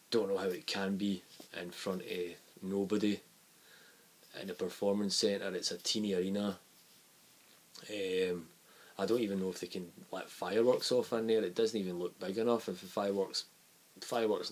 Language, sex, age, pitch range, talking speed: English, male, 20-39, 95-105 Hz, 170 wpm